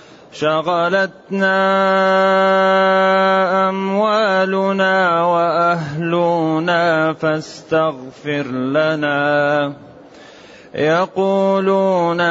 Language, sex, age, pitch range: Arabic, male, 30-49, 160-195 Hz